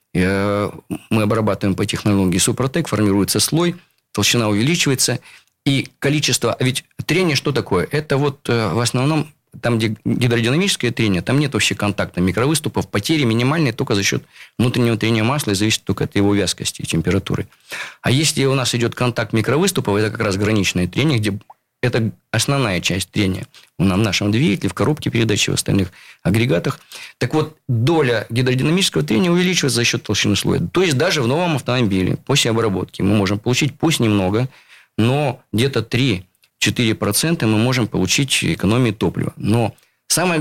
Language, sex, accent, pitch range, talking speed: Russian, male, native, 105-140 Hz, 155 wpm